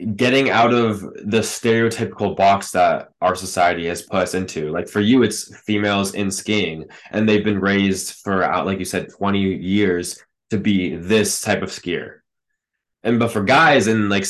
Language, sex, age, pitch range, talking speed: English, male, 10-29, 95-110 Hz, 180 wpm